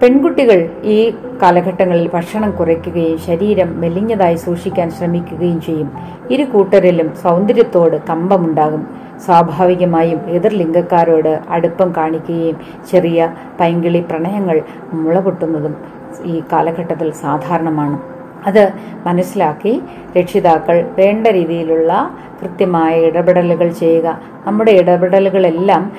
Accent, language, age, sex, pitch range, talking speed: native, Malayalam, 30-49, female, 170-200 Hz, 85 wpm